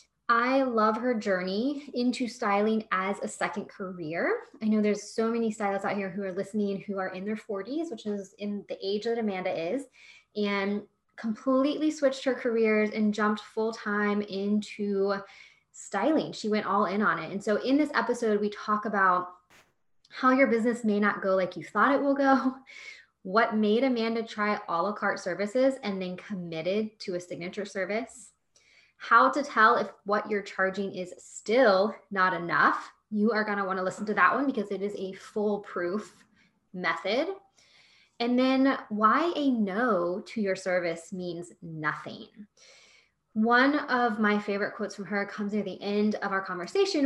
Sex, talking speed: female, 175 wpm